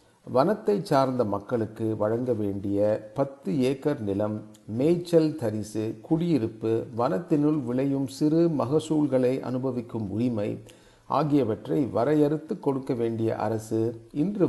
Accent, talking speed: native, 95 wpm